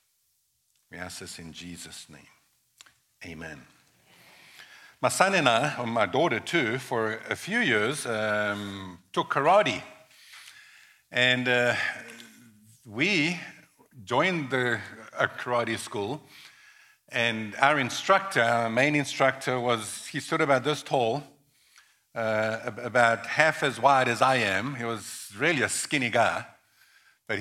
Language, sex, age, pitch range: English, male, 50-69, 115-145 Hz